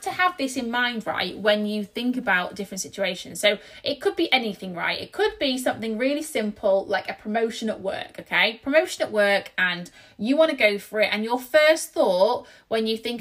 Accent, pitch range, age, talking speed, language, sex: British, 200-265 Hz, 20-39, 215 wpm, English, female